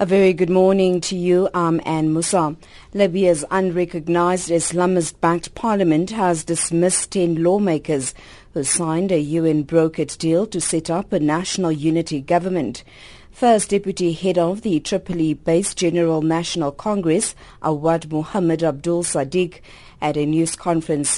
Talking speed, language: 125 wpm, English